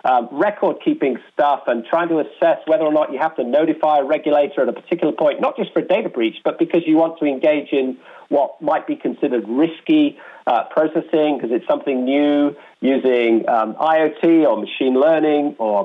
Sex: male